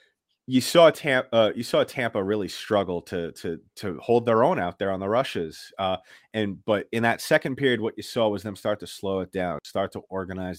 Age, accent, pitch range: 30-49, American, 100-130 Hz